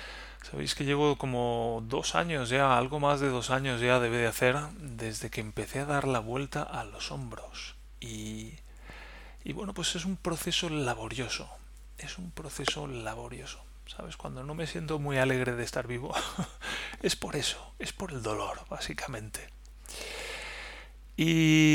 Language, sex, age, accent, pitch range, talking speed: Spanish, male, 30-49, Spanish, 110-145 Hz, 155 wpm